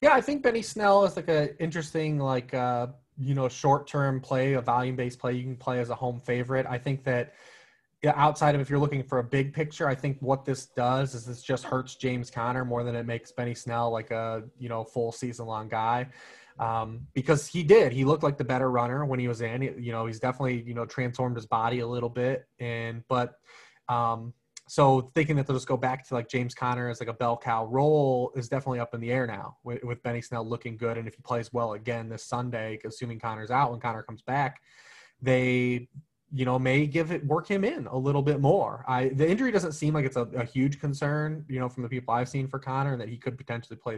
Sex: male